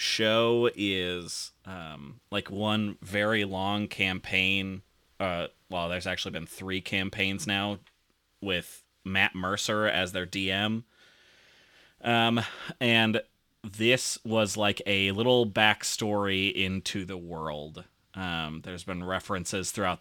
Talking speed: 115 wpm